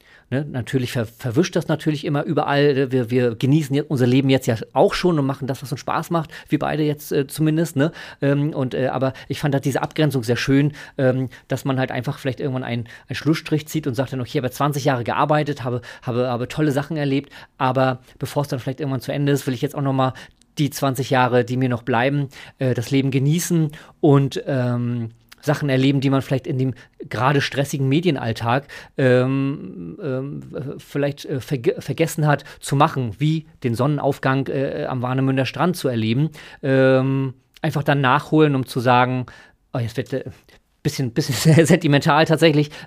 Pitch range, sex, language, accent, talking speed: 130-150 Hz, male, German, German, 195 wpm